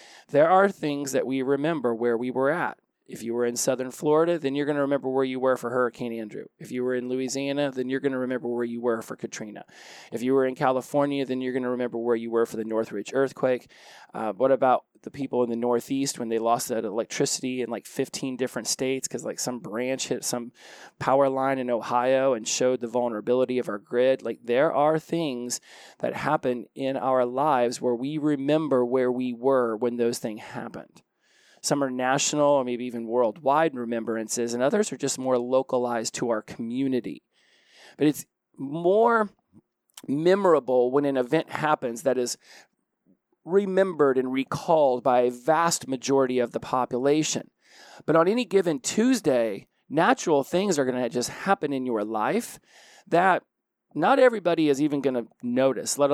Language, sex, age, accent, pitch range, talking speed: English, male, 20-39, American, 120-145 Hz, 185 wpm